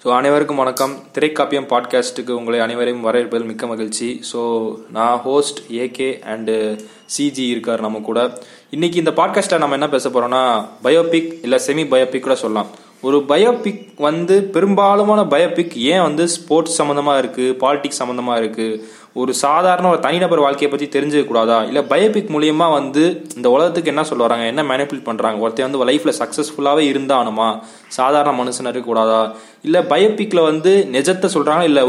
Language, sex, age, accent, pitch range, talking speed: Tamil, male, 20-39, native, 125-170 Hz, 145 wpm